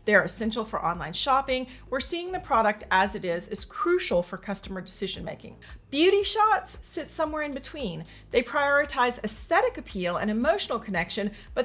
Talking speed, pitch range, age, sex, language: 160 wpm, 195-275 Hz, 40-59, female, English